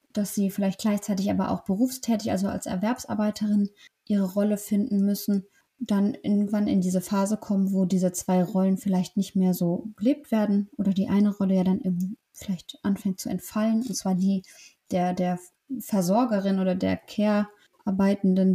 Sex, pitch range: female, 190-220 Hz